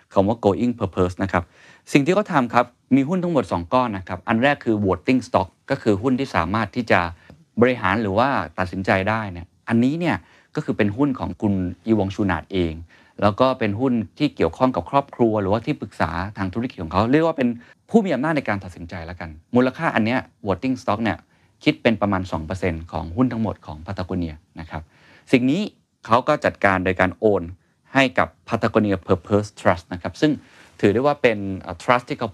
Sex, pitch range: male, 90-125 Hz